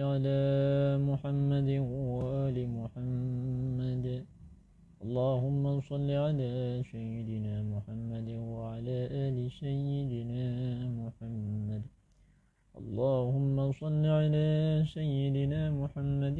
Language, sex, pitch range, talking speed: Indonesian, male, 115-140 Hz, 40 wpm